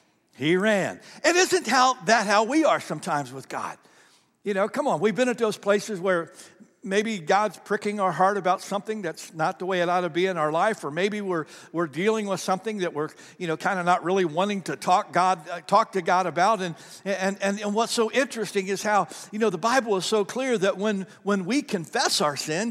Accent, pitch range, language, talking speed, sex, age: American, 155-210 Hz, English, 230 wpm, male, 60-79